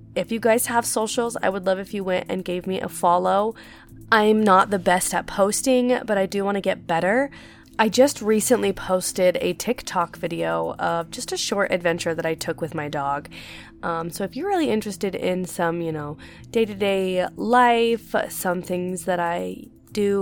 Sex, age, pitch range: female, 20-39, 170-200 Hz